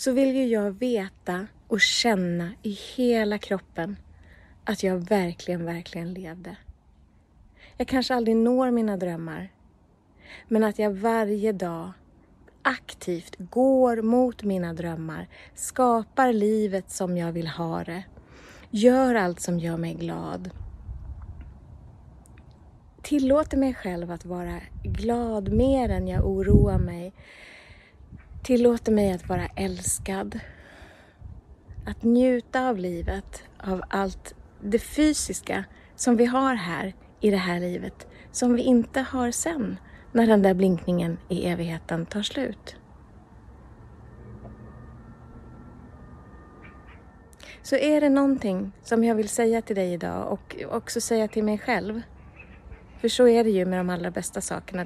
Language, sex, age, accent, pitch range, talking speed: Swedish, female, 30-49, native, 170-235 Hz, 125 wpm